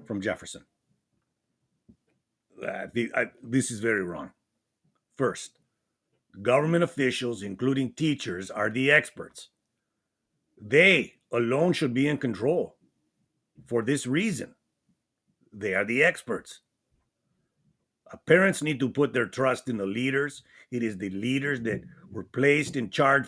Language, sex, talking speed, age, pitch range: English, male, 120 wpm, 50-69, 110-140 Hz